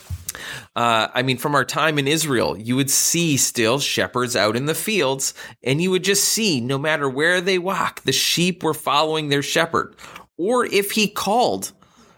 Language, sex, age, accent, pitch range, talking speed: English, male, 20-39, American, 140-185 Hz, 180 wpm